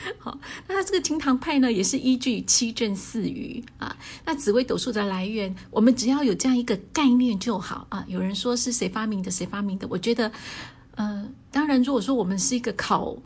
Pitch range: 205-260 Hz